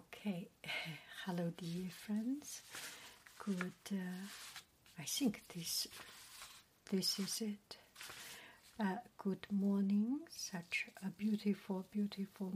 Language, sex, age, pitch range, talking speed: English, female, 60-79, 190-225 Hz, 85 wpm